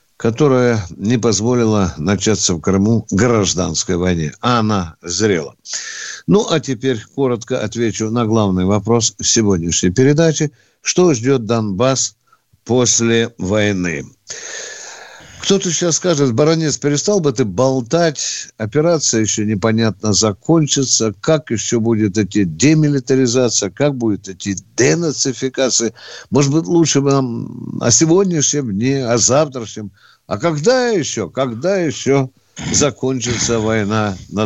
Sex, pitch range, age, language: male, 105-140 Hz, 60-79, Russian